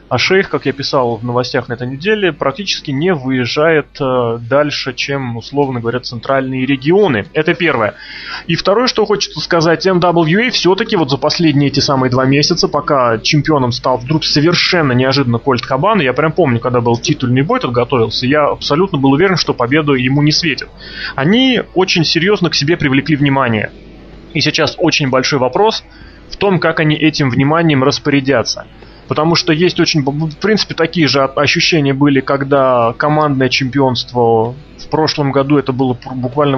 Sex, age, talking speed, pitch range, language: male, 20-39, 160 wpm, 130-160 Hz, Russian